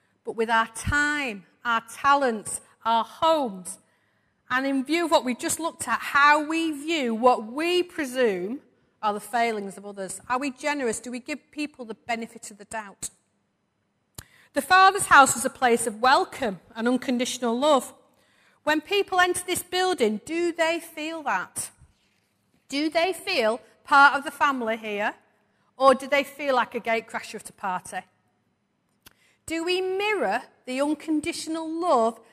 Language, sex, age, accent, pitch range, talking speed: English, female, 40-59, British, 230-310 Hz, 155 wpm